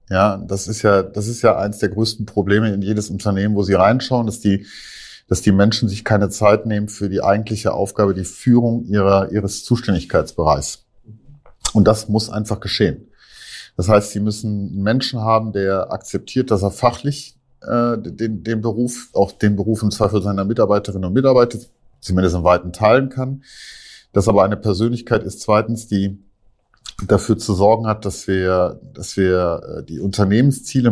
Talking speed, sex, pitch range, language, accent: 170 wpm, male, 95-110 Hz, German, German